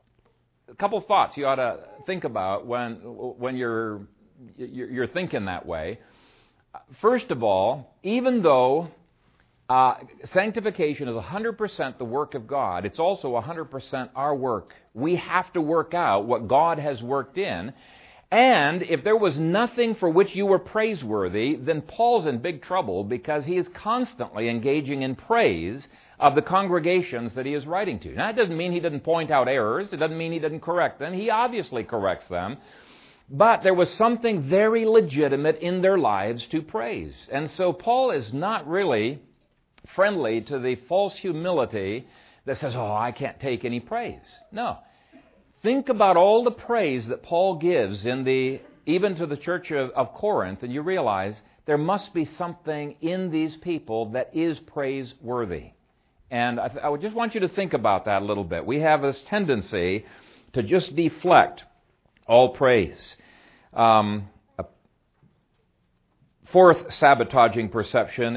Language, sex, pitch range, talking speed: English, male, 125-185 Hz, 165 wpm